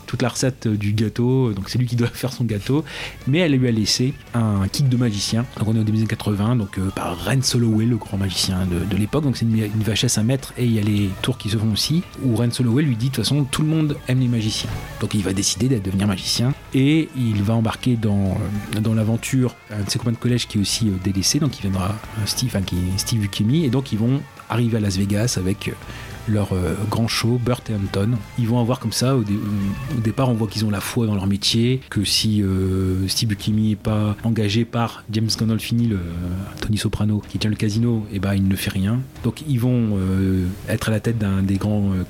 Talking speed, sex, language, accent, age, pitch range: 250 wpm, male, French, French, 40-59, 100-120 Hz